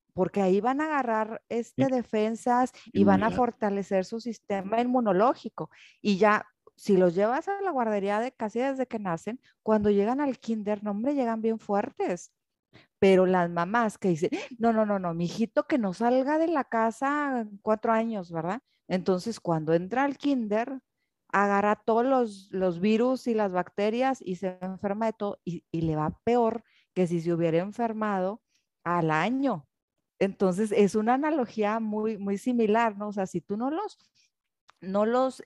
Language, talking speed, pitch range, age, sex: English, 170 wpm, 190-240 Hz, 40-59, female